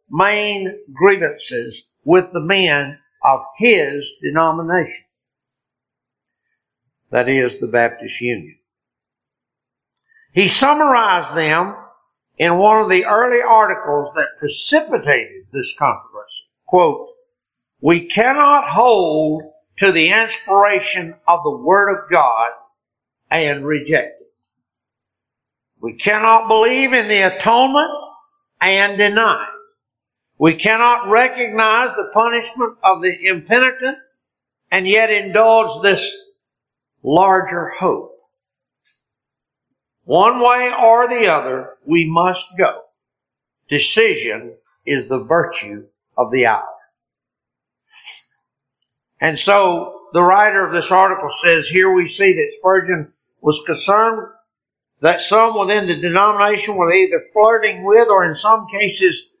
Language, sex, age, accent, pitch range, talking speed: English, male, 60-79, American, 165-235 Hz, 105 wpm